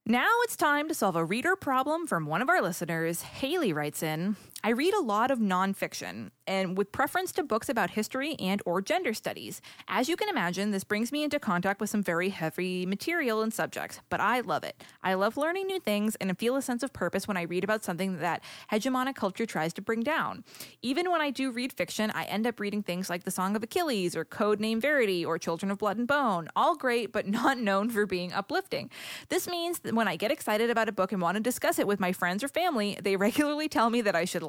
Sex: female